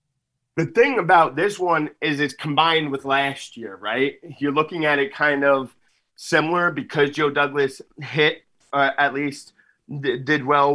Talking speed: 155 wpm